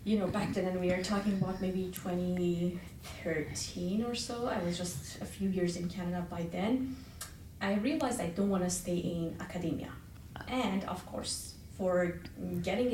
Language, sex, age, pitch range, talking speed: English, female, 30-49, 170-200 Hz, 165 wpm